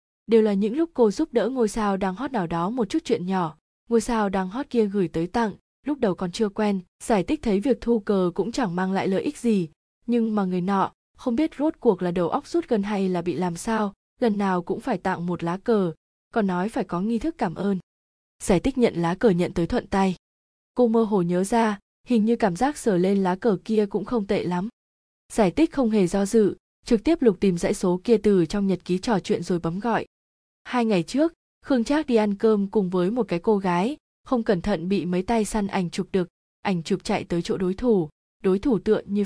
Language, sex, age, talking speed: Vietnamese, female, 20-39, 245 wpm